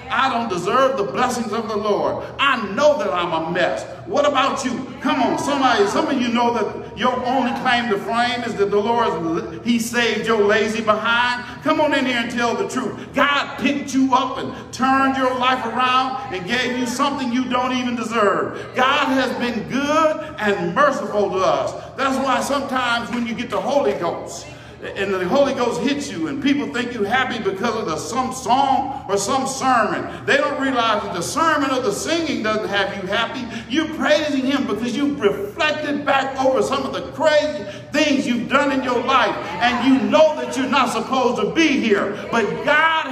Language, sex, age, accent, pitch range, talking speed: English, male, 50-69, American, 230-280 Hz, 200 wpm